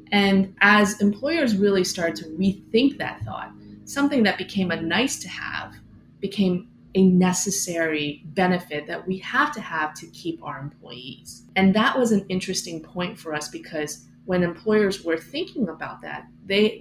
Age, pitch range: 30-49, 160-210 Hz